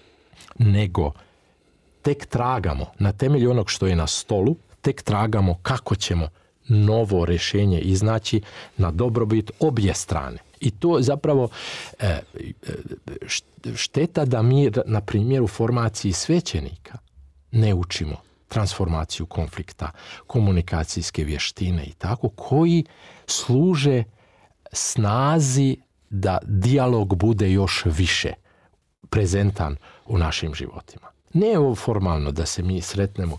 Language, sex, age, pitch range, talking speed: Croatian, male, 40-59, 90-130 Hz, 105 wpm